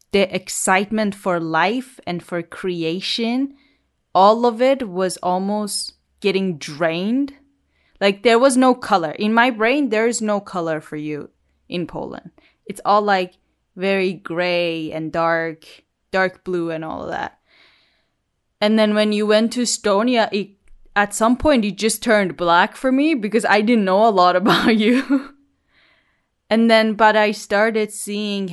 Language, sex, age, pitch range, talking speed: English, female, 10-29, 180-220 Hz, 155 wpm